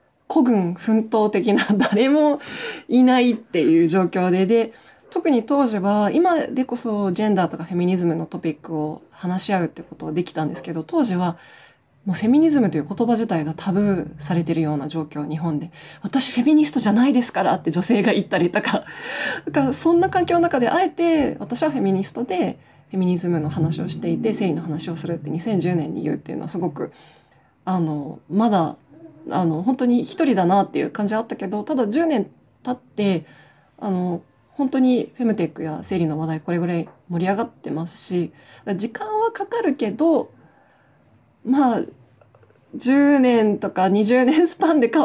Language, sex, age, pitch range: Japanese, female, 20-39, 175-265 Hz